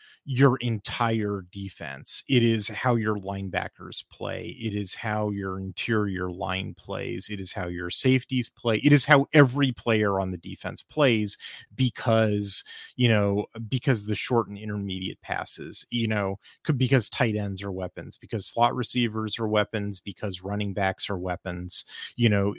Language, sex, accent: English, male, American